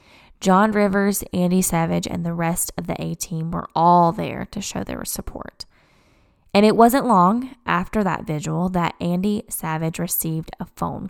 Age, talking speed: 10-29, 160 wpm